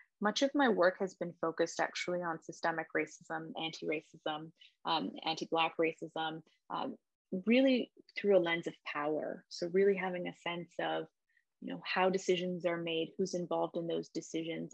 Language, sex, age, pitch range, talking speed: English, female, 20-39, 165-195 Hz, 160 wpm